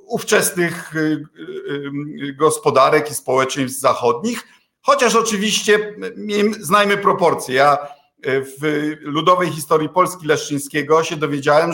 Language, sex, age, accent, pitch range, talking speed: Polish, male, 50-69, native, 155-190 Hz, 85 wpm